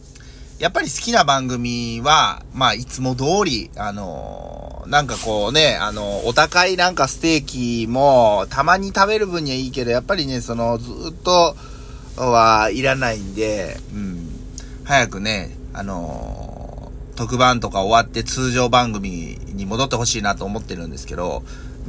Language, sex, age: Japanese, male, 30-49